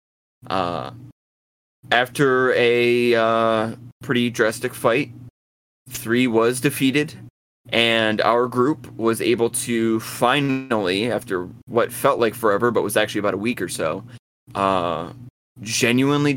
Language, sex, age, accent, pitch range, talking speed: English, male, 30-49, American, 110-125 Hz, 115 wpm